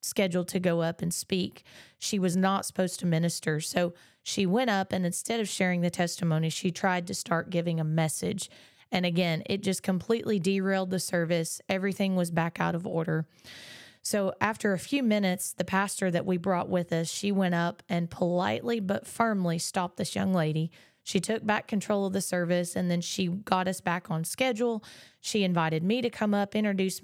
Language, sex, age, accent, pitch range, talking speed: English, female, 20-39, American, 175-200 Hz, 195 wpm